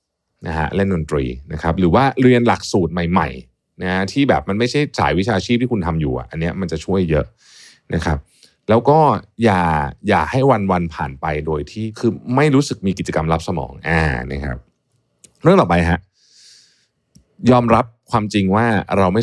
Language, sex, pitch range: Thai, male, 80-110 Hz